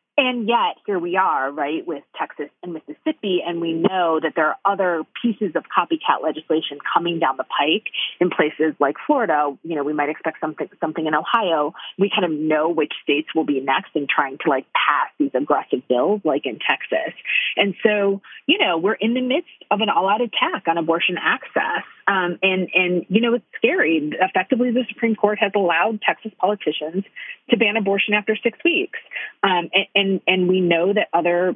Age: 30-49